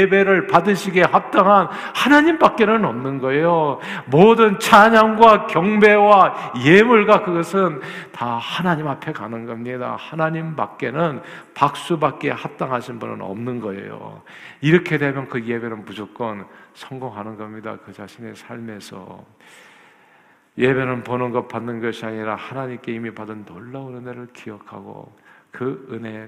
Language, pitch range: Korean, 110-140 Hz